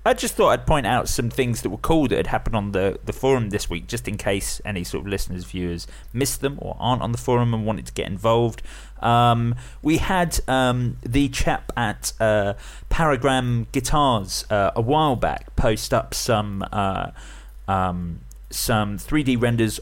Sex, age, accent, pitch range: male, 30-49, British, 100-125 Hz